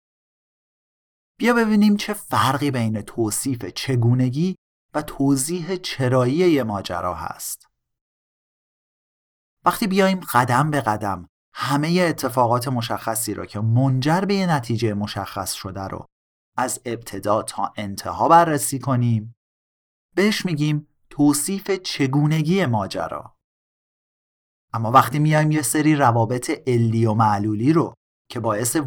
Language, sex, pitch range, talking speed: Persian, male, 110-155 Hz, 105 wpm